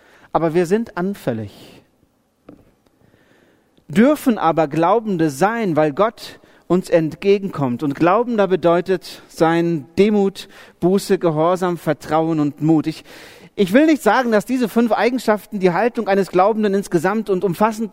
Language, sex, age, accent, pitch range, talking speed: German, male, 40-59, German, 180-230 Hz, 125 wpm